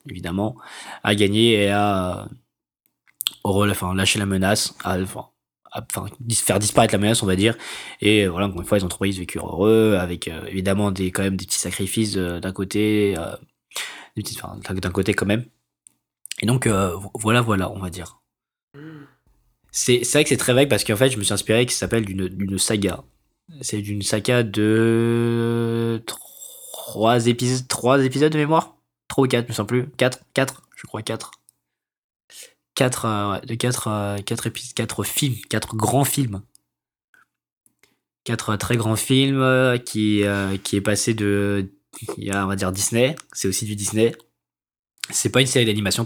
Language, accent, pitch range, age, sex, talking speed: French, French, 100-115 Hz, 20-39, male, 170 wpm